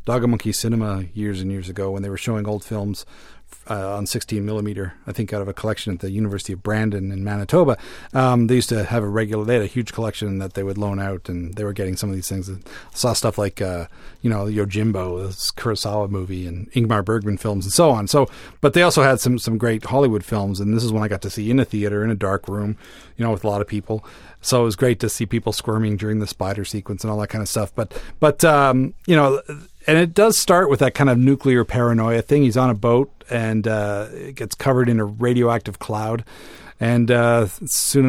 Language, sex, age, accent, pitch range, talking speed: English, male, 40-59, American, 100-125 Hz, 250 wpm